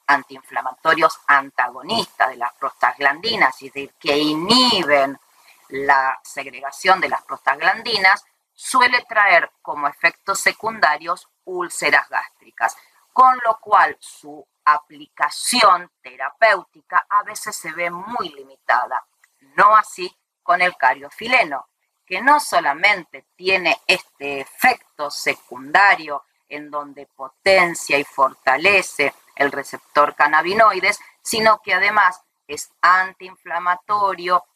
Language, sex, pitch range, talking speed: Spanish, female, 145-195 Hz, 100 wpm